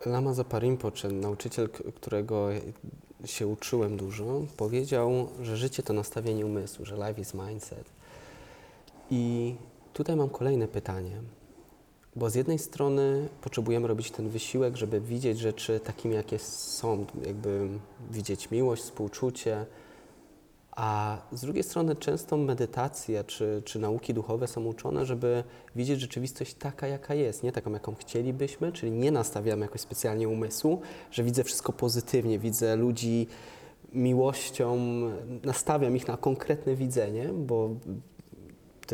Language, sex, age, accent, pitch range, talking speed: Polish, male, 20-39, native, 105-130 Hz, 125 wpm